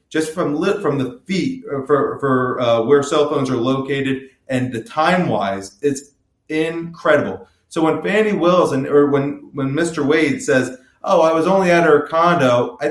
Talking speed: 180 wpm